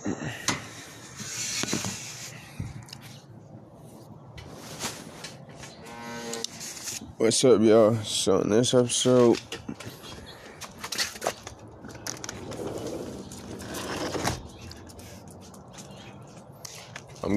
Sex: male